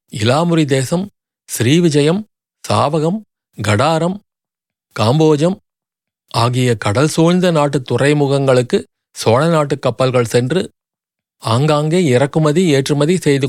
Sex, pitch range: male, 125-160 Hz